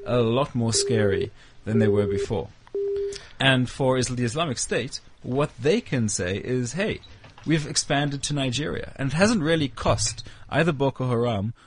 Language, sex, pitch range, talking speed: English, male, 115-145 Hz, 160 wpm